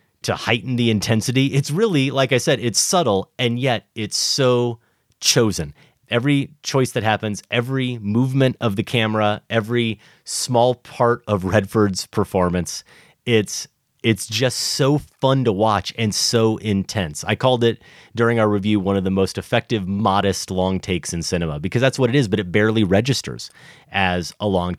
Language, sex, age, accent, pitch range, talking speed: English, male, 30-49, American, 95-125 Hz, 165 wpm